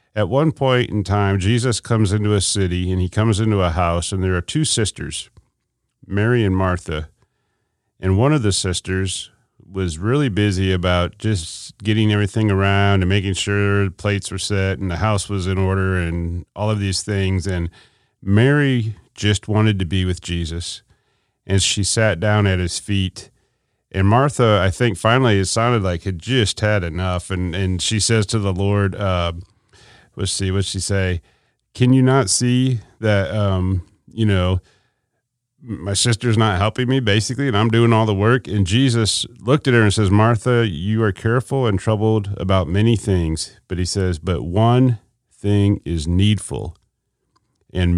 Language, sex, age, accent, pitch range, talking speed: English, male, 40-59, American, 95-110 Hz, 175 wpm